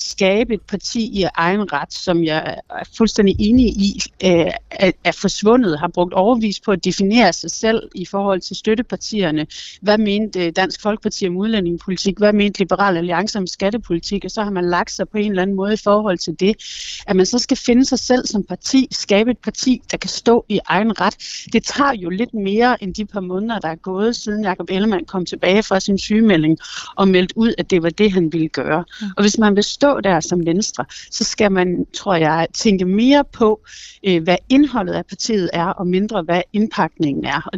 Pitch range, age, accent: 175-215 Hz, 60-79, native